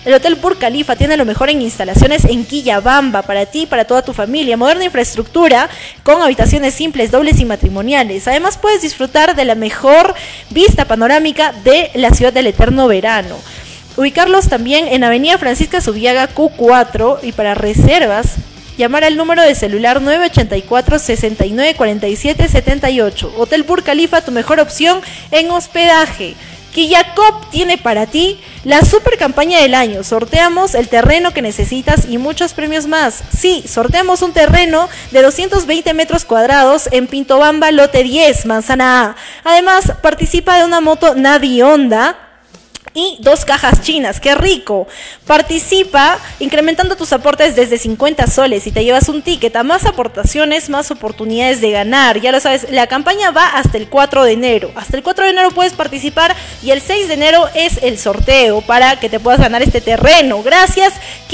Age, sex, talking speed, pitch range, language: 20-39, female, 160 wpm, 245-335 Hz, Spanish